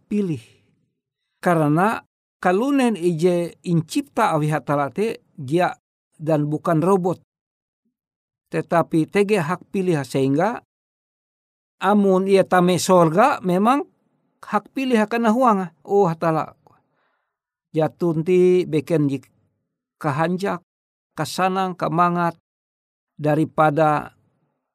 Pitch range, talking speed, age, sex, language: 155-195 Hz, 85 wpm, 60-79, male, Indonesian